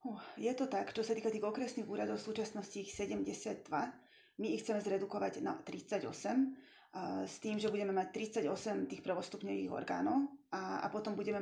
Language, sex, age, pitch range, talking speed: Slovak, female, 20-39, 195-225 Hz, 180 wpm